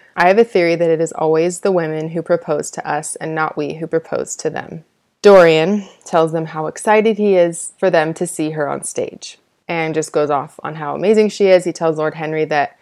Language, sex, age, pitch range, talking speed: English, female, 20-39, 155-175 Hz, 230 wpm